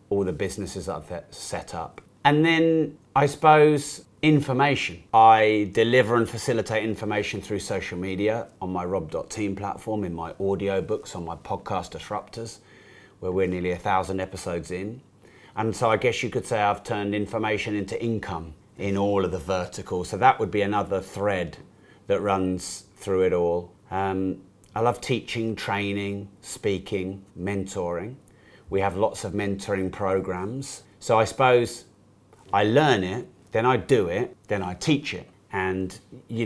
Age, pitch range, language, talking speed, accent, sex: 30-49, 95-115 Hz, English, 155 wpm, British, male